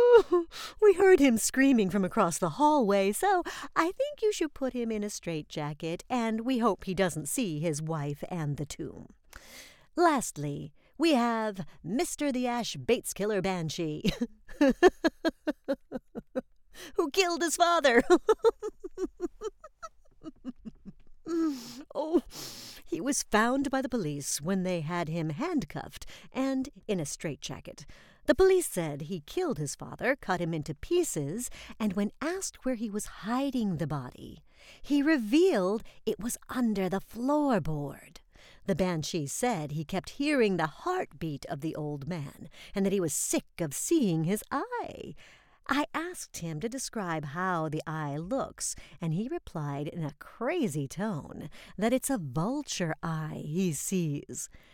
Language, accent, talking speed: English, American, 140 wpm